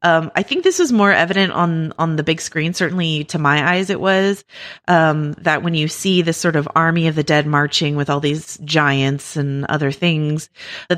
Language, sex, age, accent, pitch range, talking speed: English, female, 30-49, American, 145-175 Hz, 215 wpm